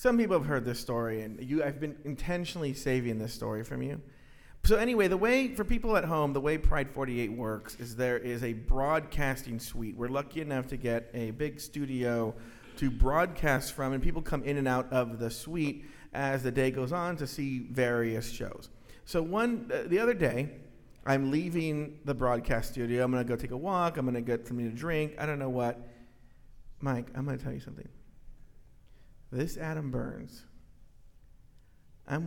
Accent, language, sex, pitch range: American, English, male, 125-170 Hz